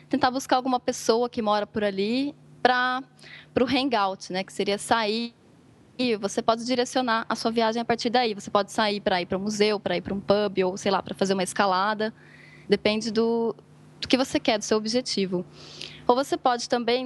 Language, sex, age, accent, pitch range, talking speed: Portuguese, female, 10-29, Brazilian, 205-245 Hz, 205 wpm